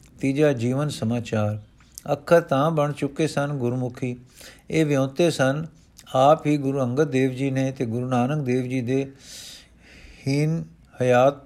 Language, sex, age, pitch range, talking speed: Punjabi, male, 50-69, 125-145 Hz, 140 wpm